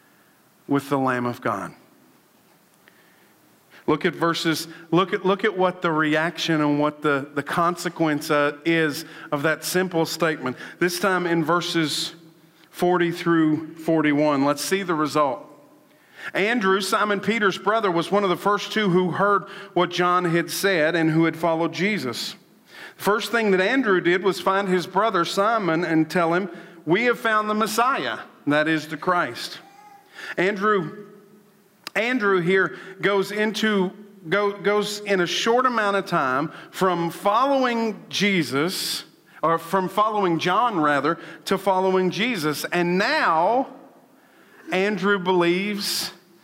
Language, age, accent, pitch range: English, 50-69, American, 165-210 Hz